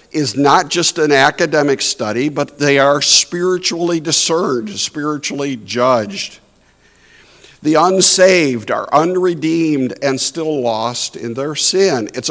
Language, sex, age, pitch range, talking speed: English, male, 60-79, 140-180 Hz, 115 wpm